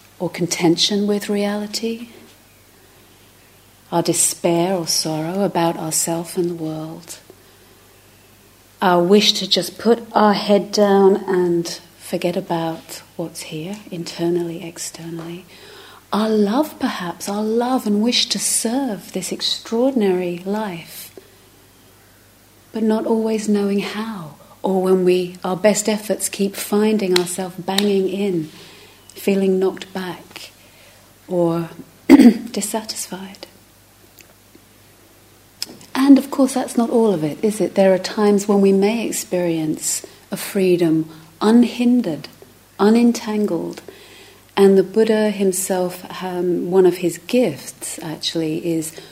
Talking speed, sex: 115 wpm, female